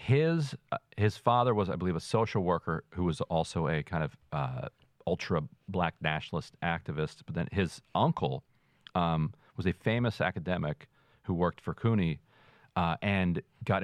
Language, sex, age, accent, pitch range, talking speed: English, male, 40-59, American, 85-115 Hz, 160 wpm